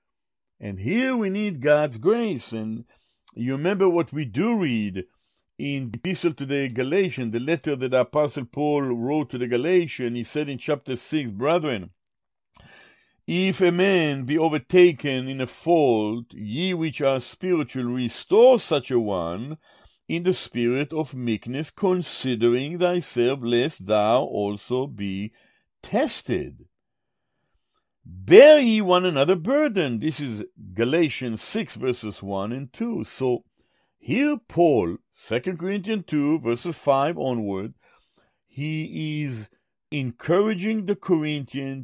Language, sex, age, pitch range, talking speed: English, male, 60-79, 120-170 Hz, 130 wpm